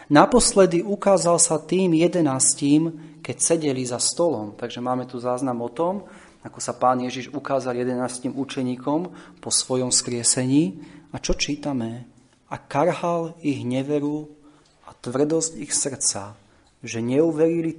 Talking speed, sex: 130 wpm, male